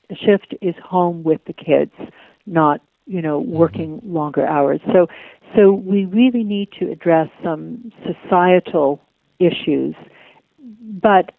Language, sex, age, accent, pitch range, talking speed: English, female, 60-79, American, 160-195 Hz, 125 wpm